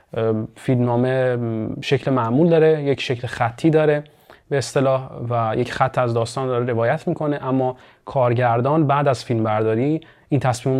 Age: 30-49